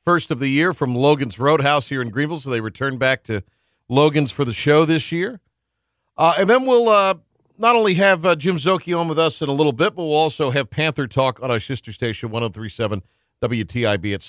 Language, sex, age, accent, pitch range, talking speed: English, male, 50-69, American, 115-155 Hz, 220 wpm